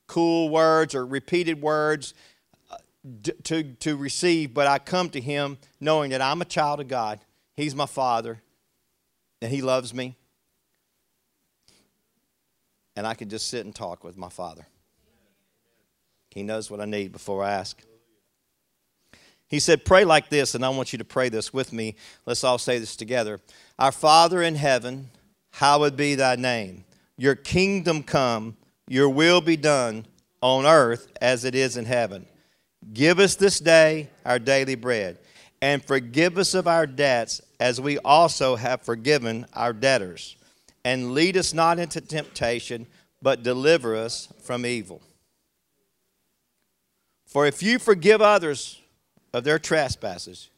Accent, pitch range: American, 115-155 Hz